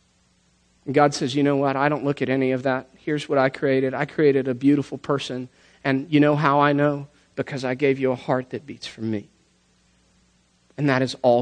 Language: English